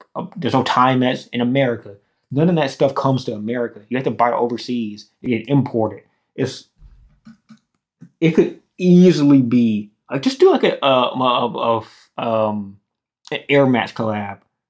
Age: 20-39